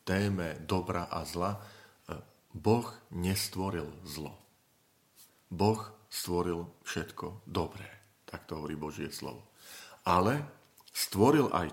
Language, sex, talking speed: Slovak, male, 95 wpm